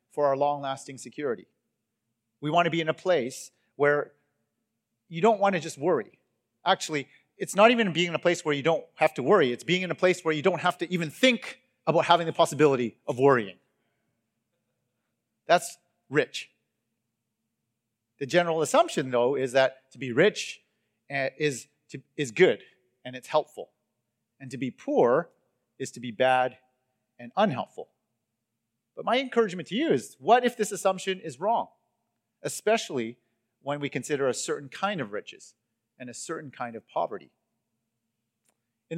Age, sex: 40-59, male